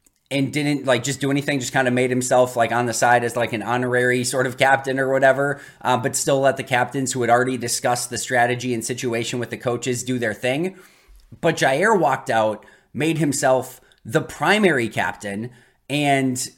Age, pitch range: 30-49, 125-145 Hz